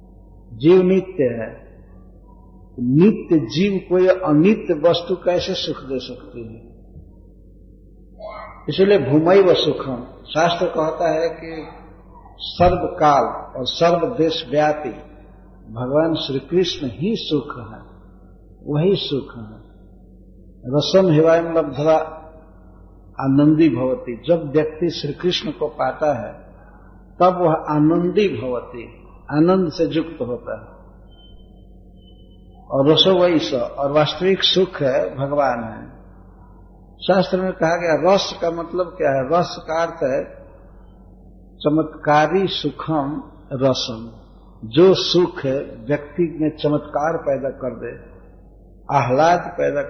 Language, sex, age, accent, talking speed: Hindi, male, 50-69, native, 110 wpm